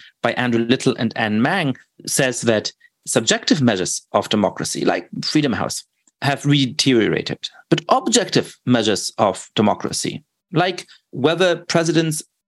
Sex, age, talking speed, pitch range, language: male, 30-49, 120 wpm, 115-170 Hz, English